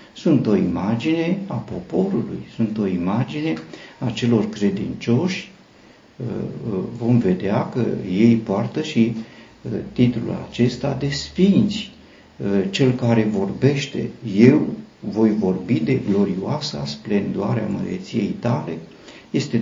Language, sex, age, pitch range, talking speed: Romanian, male, 50-69, 105-130 Hz, 100 wpm